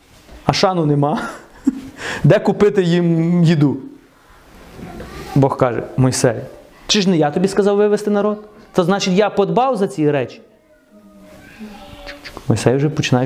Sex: male